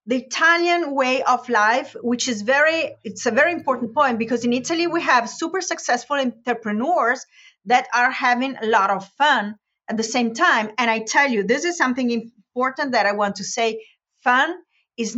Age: 40-59